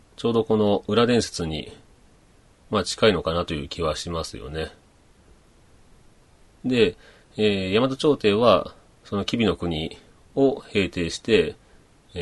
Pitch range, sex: 80-110 Hz, male